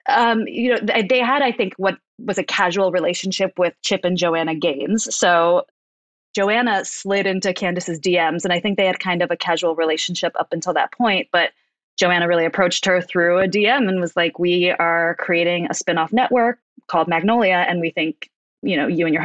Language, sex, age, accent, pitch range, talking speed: English, female, 20-39, American, 165-195 Hz, 200 wpm